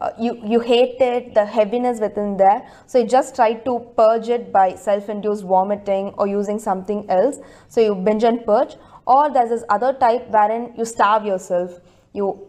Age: 20-39